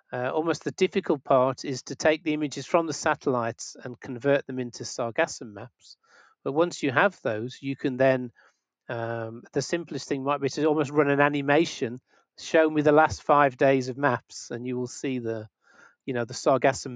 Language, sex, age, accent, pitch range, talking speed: English, male, 40-59, British, 120-145 Hz, 195 wpm